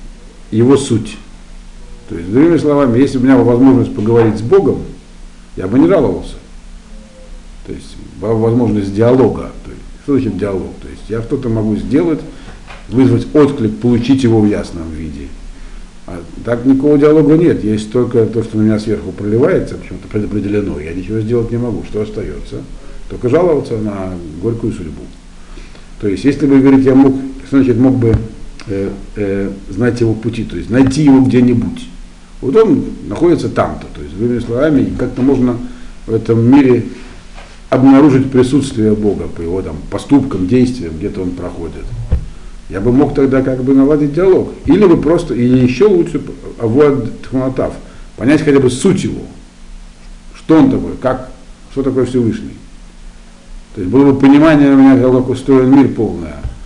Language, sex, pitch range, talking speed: Russian, male, 90-130 Hz, 160 wpm